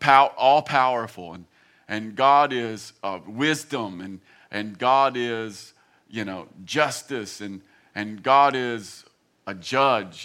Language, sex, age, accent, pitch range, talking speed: English, male, 40-59, American, 120-150 Hz, 125 wpm